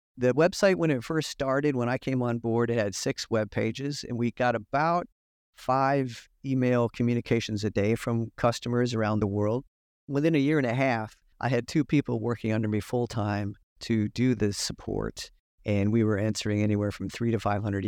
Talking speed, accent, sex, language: 195 wpm, American, male, English